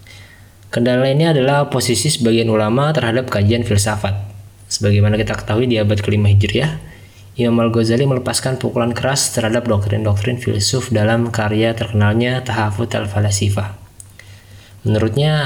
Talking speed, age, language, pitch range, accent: 115 wpm, 20-39, Indonesian, 105-125 Hz, native